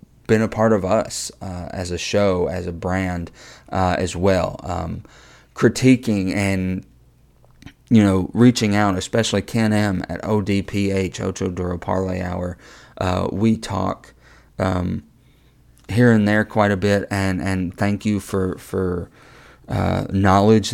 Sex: male